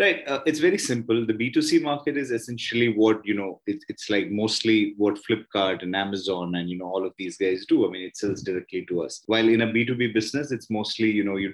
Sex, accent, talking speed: male, Indian, 235 wpm